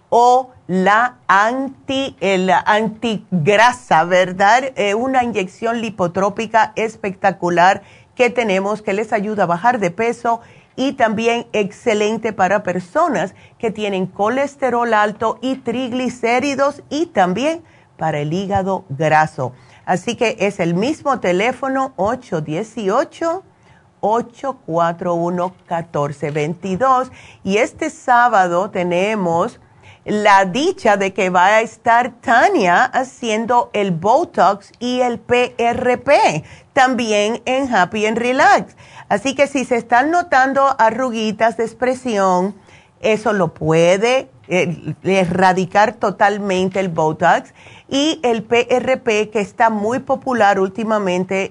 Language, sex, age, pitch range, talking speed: Spanish, female, 40-59, 185-245 Hz, 105 wpm